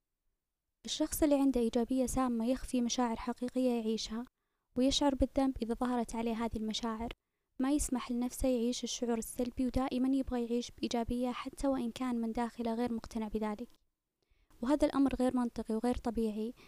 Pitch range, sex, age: 230-255 Hz, female, 20-39